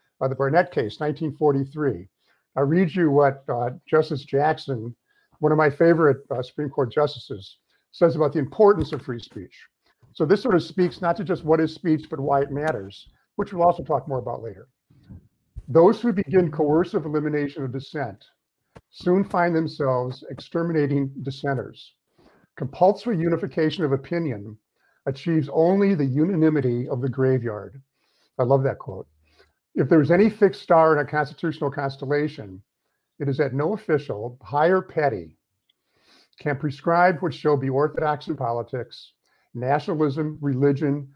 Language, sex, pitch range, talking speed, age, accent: English, male, 135-165 Hz, 150 wpm, 50-69, American